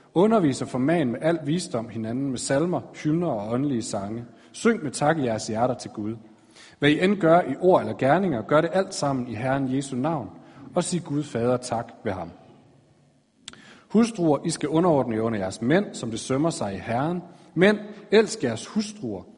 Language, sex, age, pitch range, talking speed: Danish, male, 40-59, 115-165 Hz, 190 wpm